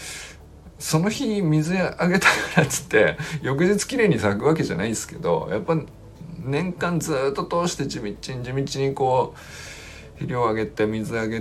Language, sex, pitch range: Japanese, male, 85-140 Hz